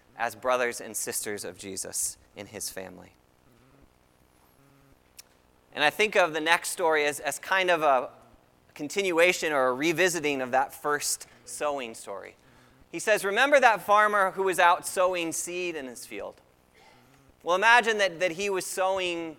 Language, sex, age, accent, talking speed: English, male, 30-49, American, 155 wpm